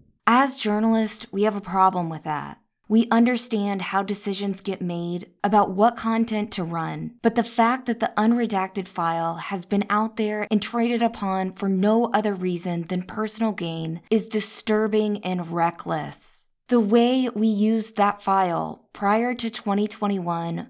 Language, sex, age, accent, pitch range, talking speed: English, female, 20-39, American, 185-230 Hz, 155 wpm